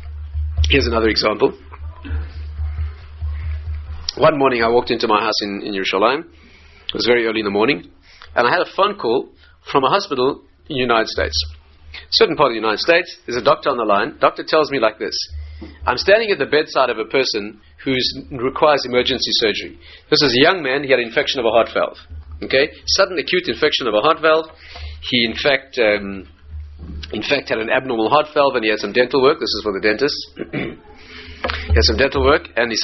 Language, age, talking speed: English, 40-59, 205 wpm